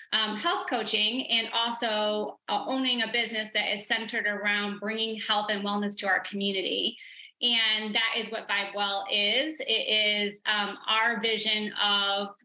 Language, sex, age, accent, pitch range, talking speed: English, female, 20-39, American, 205-240 Hz, 160 wpm